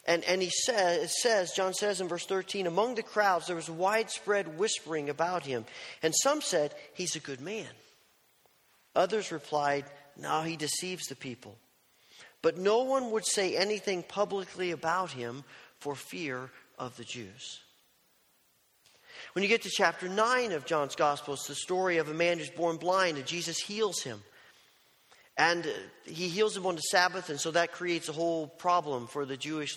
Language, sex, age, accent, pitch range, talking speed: English, male, 40-59, American, 150-190 Hz, 175 wpm